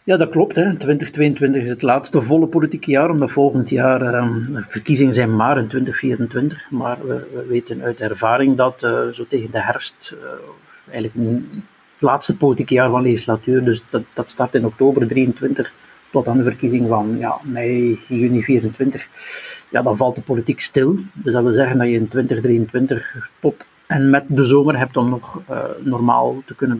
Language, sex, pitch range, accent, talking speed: Dutch, male, 125-145 Hz, Dutch, 190 wpm